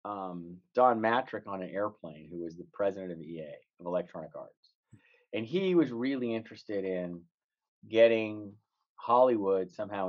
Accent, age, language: American, 30-49, English